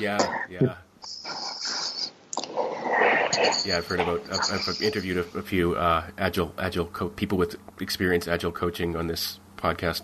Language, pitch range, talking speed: English, 85-105 Hz, 135 wpm